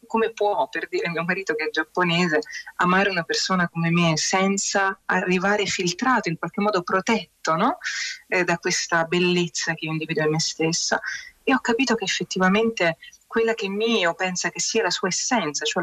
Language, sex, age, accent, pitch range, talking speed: Italian, female, 30-49, native, 175-220 Hz, 180 wpm